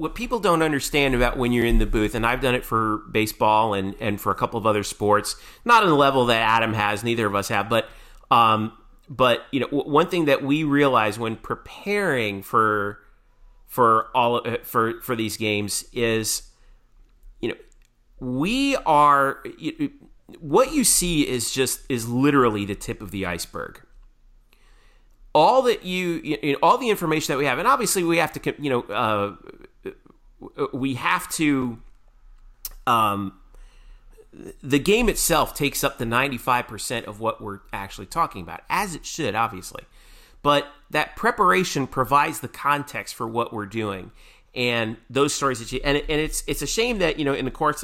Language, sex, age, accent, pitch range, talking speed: English, male, 30-49, American, 110-150 Hz, 180 wpm